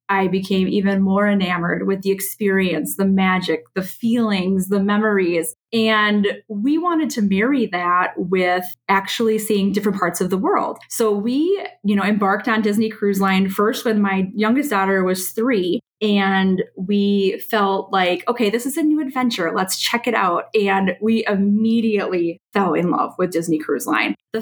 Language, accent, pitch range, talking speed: English, American, 190-225 Hz, 170 wpm